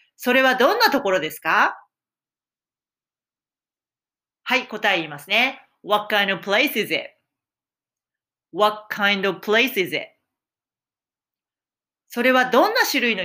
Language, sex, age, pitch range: Japanese, female, 40-59, 195-260 Hz